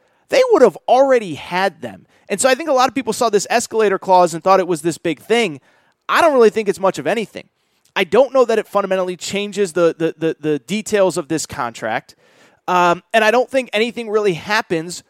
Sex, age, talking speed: male, 30-49, 225 wpm